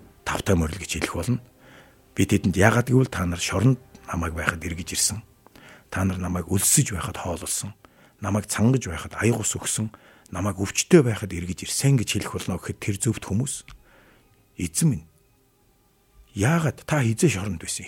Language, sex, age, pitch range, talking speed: English, male, 60-79, 95-130 Hz, 150 wpm